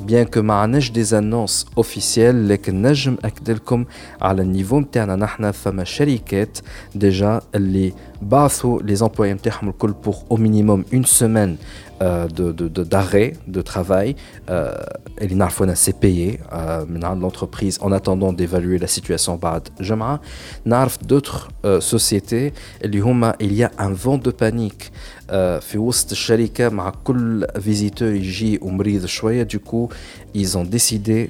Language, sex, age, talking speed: Arabic, male, 50-69, 140 wpm